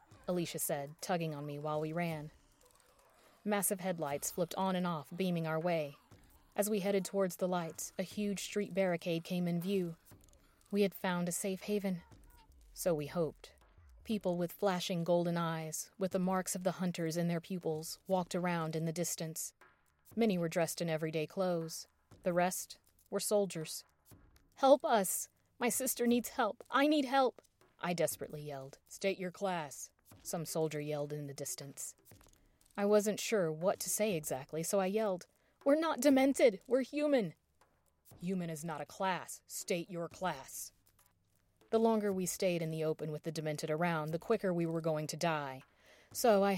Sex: female